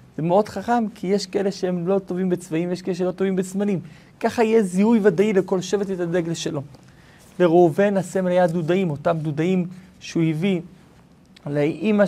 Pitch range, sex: 155-195 Hz, male